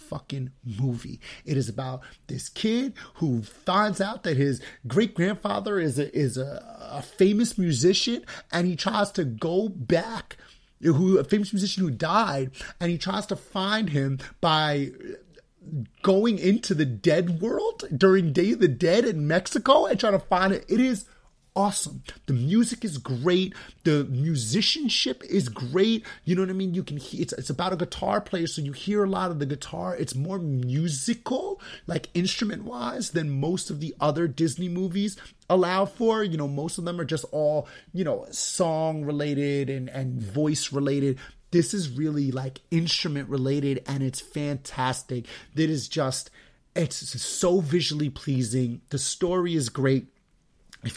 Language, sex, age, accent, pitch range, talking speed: English, male, 30-49, American, 135-190 Hz, 165 wpm